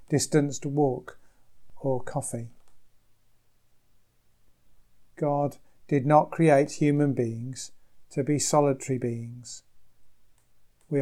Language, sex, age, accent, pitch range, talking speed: English, male, 40-59, British, 125-150 Hz, 80 wpm